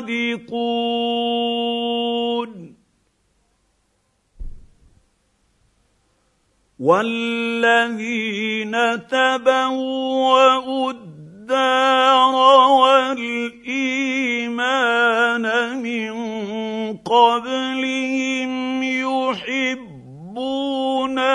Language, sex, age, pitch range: Arabic, male, 50-69, 235-260 Hz